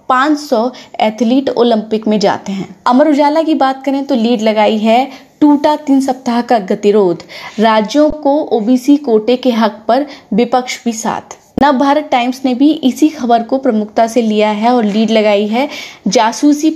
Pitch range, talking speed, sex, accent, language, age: 220-270 Hz, 170 wpm, female, native, Hindi, 20-39